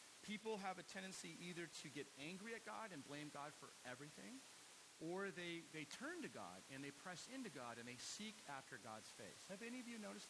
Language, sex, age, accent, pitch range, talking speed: English, male, 40-59, American, 135-190 Hz, 215 wpm